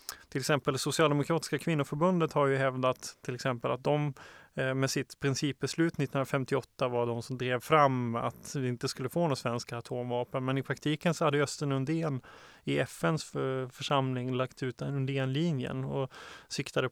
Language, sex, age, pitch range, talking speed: Swedish, male, 20-39, 130-150 Hz, 155 wpm